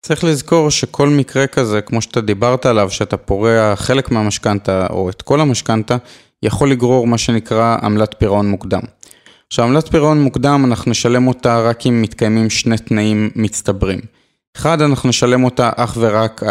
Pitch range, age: 105-130 Hz, 20-39